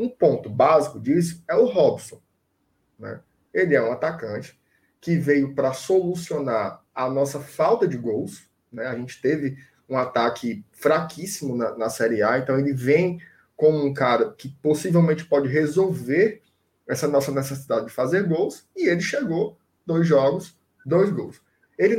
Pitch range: 140-190 Hz